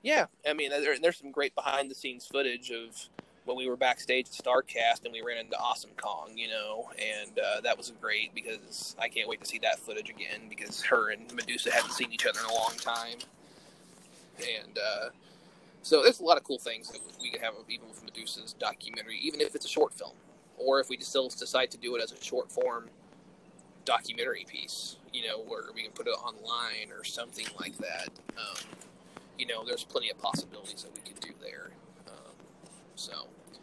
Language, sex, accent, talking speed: English, male, American, 200 wpm